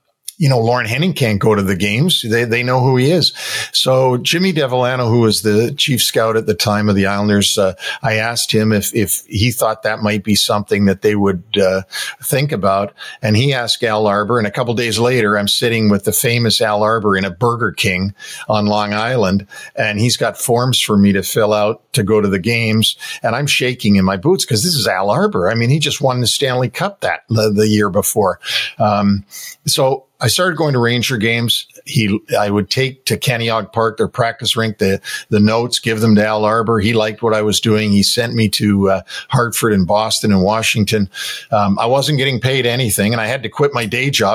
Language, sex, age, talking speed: English, male, 50-69, 225 wpm